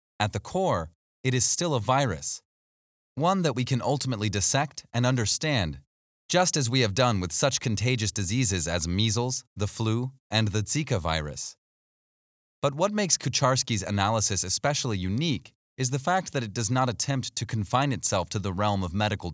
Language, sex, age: English, male, 30-49